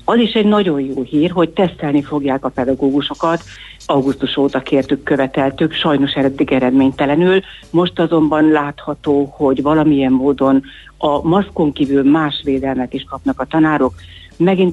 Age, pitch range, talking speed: 60-79, 135-160 Hz, 135 wpm